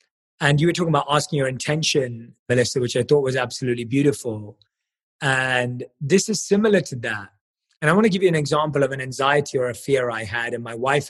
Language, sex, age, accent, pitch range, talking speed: English, male, 20-39, British, 125-165 Hz, 215 wpm